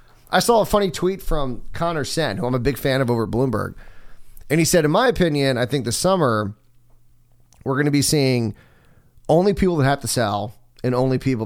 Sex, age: male, 30-49